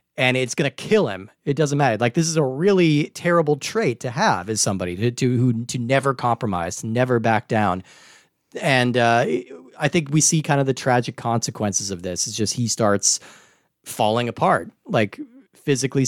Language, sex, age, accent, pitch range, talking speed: English, male, 30-49, American, 115-150 Hz, 185 wpm